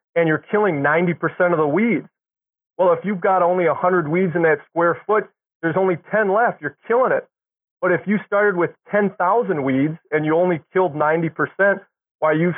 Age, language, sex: 30-49, English, male